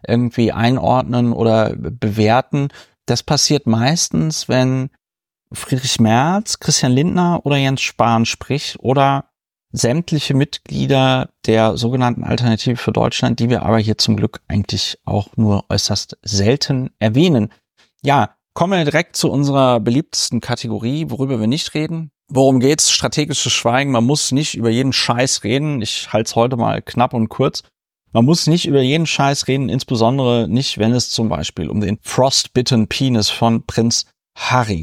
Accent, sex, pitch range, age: German, male, 115-145 Hz, 30-49